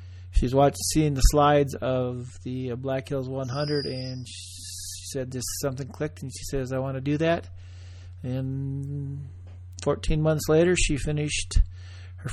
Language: English